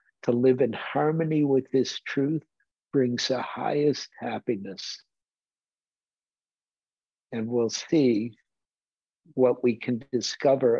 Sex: male